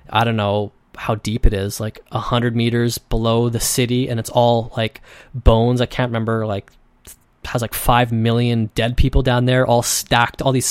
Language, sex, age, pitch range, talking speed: English, male, 20-39, 115-140 Hz, 195 wpm